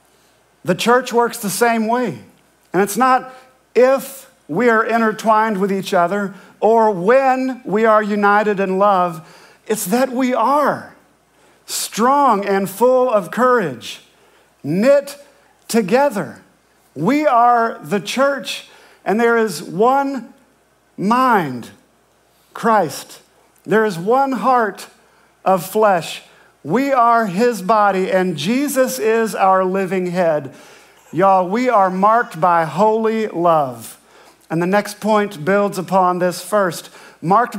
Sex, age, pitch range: male, 50-69, 185-245 Hz